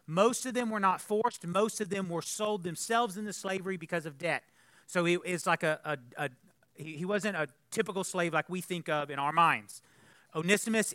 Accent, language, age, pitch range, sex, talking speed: American, English, 40-59, 145-205 Hz, male, 205 wpm